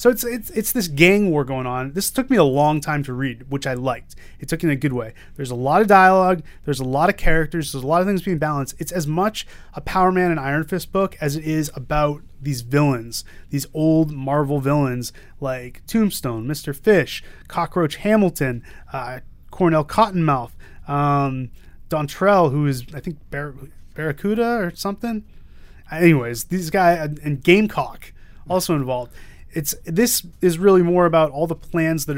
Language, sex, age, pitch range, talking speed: English, male, 30-49, 135-170 Hz, 185 wpm